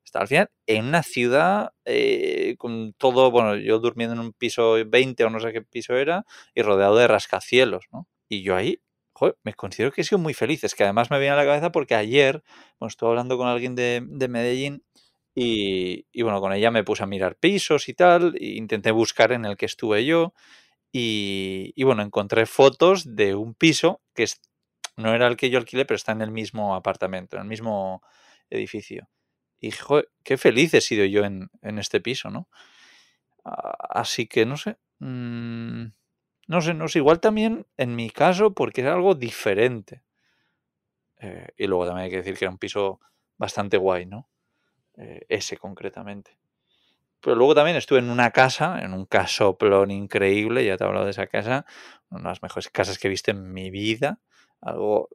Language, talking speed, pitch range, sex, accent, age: Spanish, 195 wpm, 105-140 Hz, male, Spanish, 20-39